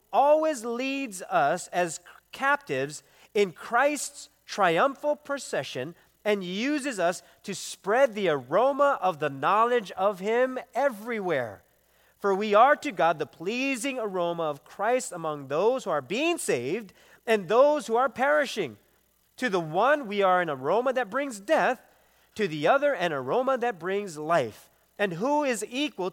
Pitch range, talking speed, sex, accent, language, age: 175-260 Hz, 150 wpm, male, American, English, 40-59